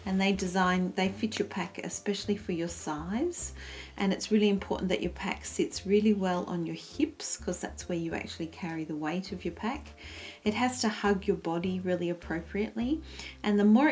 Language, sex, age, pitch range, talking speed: English, female, 40-59, 160-205 Hz, 200 wpm